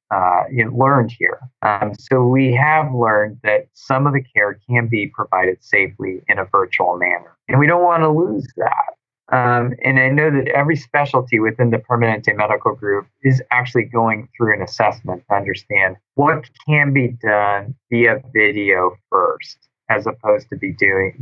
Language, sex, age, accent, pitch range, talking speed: English, male, 20-39, American, 105-130 Hz, 175 wpm